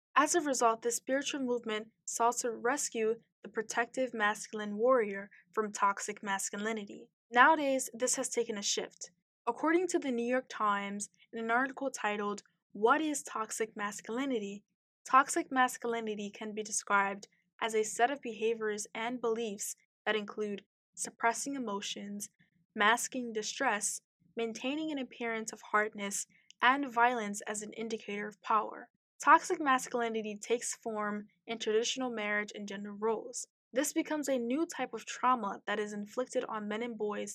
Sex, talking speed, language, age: female, 145 wpm, English, 10-29